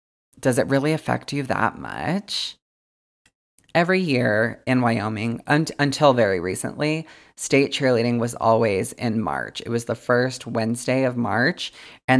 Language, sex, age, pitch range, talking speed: English, female, 20-39, 115-140 Hz, 145 wpm